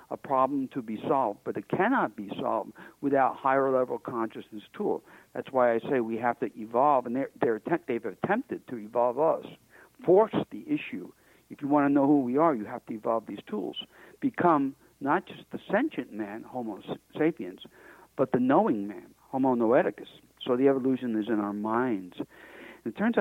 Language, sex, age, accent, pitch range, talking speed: English, male, 60-79, American, 120-150 Hz, 185 wpm